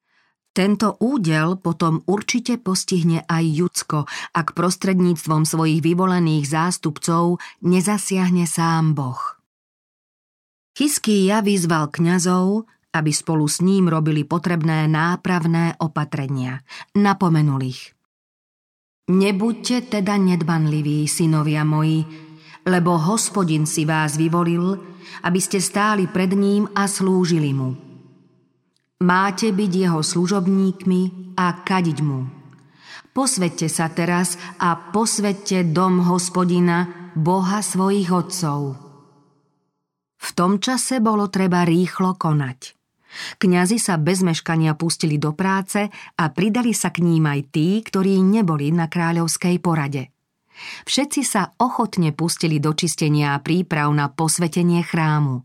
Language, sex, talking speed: Slovak, female, 110 wpm